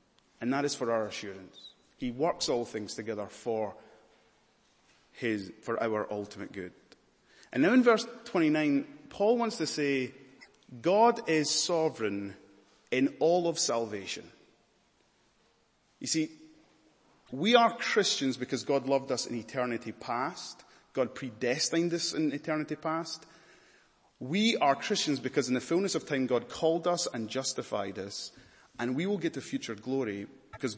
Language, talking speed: English, 145 wpm